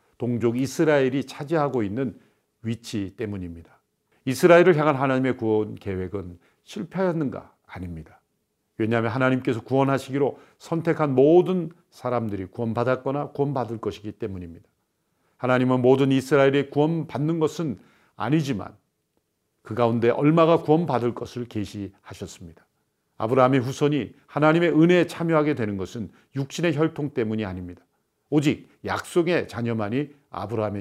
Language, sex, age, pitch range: Korean, male, 50-69, 110-150 Hz